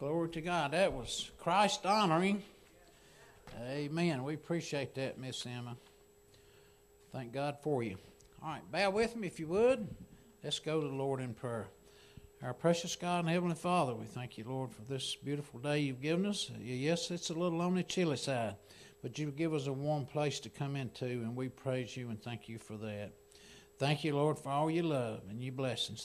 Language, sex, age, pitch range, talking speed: English, male, 60-79, 120-160 Hz, 195 wpm